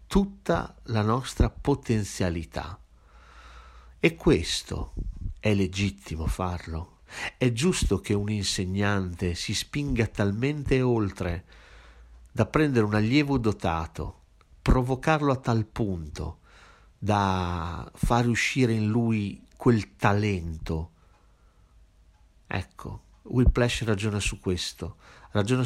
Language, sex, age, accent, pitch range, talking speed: Italian, male, 50-69, native, 90-110 Hz, 95 wpm